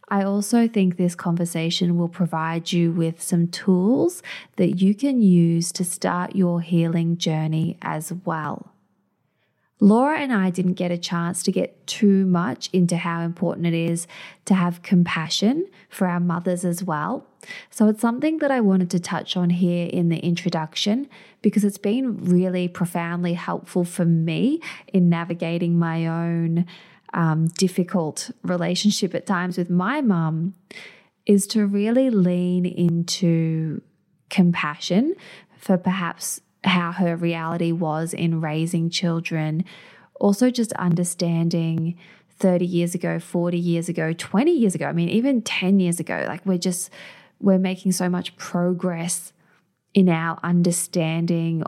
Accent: Australian